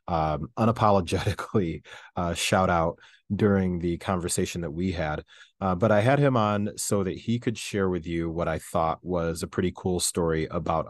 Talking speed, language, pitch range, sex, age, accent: 180 wpm, English, 85-100 Hz, male, 30-49, American